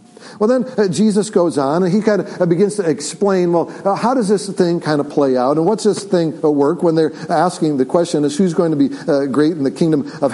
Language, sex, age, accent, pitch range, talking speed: English, male, 50-69, American, 140-200 Hz, 245 wpm